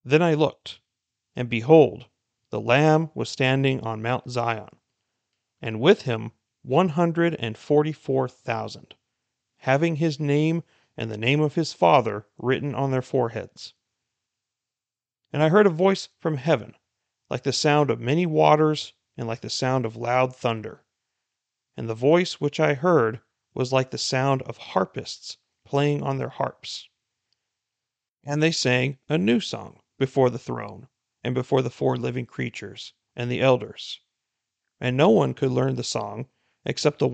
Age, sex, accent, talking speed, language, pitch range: 40-59, male, American, 155 wpm, English, 115-150 Hz